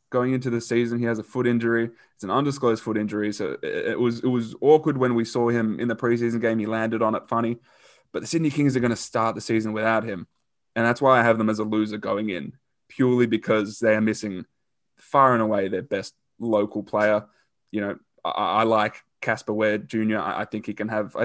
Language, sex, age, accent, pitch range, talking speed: English, male, 20-39, Australian, 110-125 Hz, 230 wpm